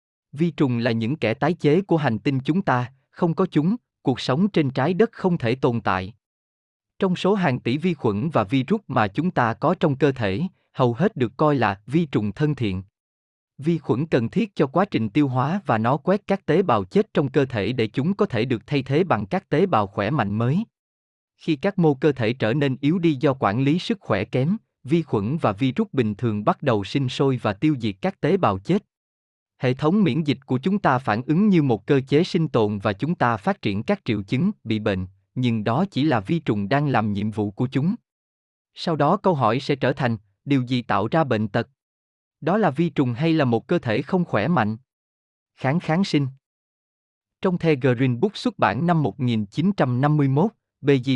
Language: Vietnamese